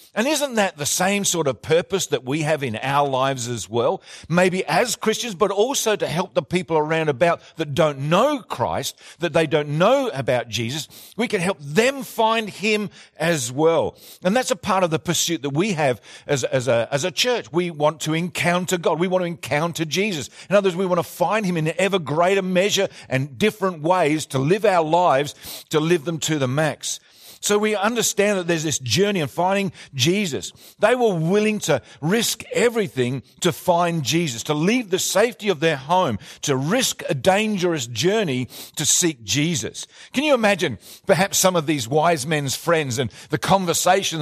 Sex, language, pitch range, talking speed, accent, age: male, English, 150-195 Hz, 190 wpm, Australian, 50-69